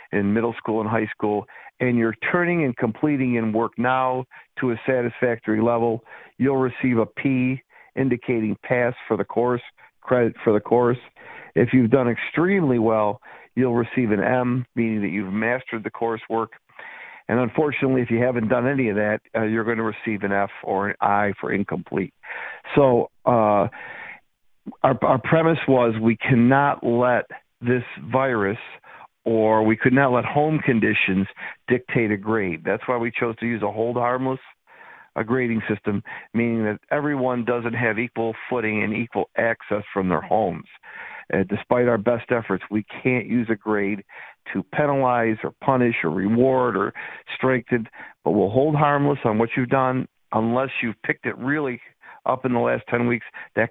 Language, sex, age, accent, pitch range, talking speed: English, male, 50-69, American, 110-130 Hz, 170 wpm